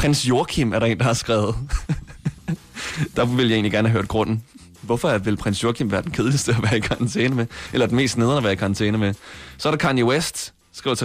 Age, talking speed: 20-39, 235 wpm